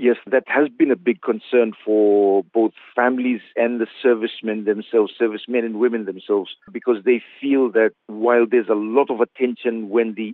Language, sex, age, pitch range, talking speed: English, male, 50-69, 105-125 Hz, 175 wpm